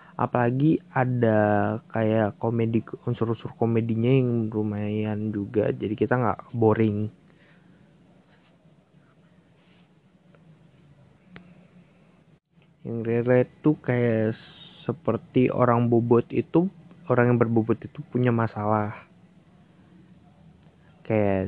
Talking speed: 80 wpm